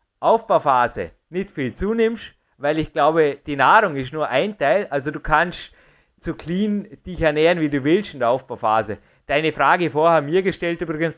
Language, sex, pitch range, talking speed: German, male, 140-175 Hz, 175 wpm